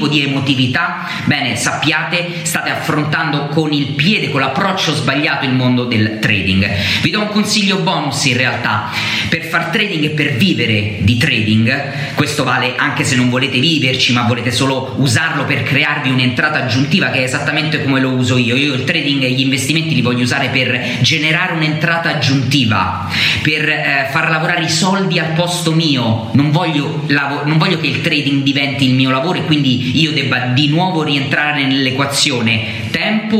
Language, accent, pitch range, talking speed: Italian, native, 125-160 Hz, 170 wpm